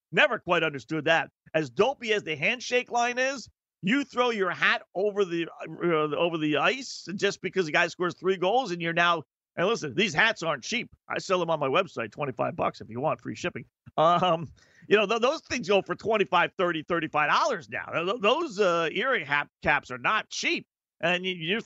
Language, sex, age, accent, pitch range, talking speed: English, male, 50-69, American, 150-205 Hz, 195 wpm